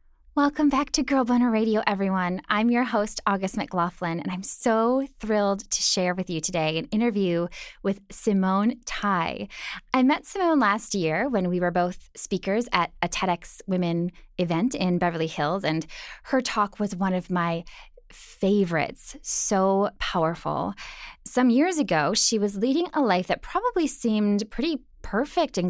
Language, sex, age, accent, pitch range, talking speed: English, female, 10-29, American, 175-235 Hz, 160 wpm